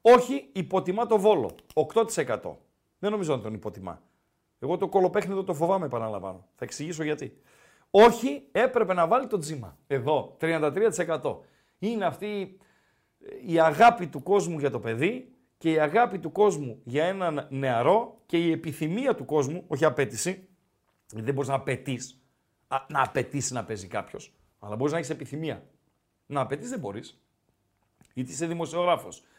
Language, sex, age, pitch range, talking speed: Greek, male, 40-59, 140-210 Hz, 140 wpm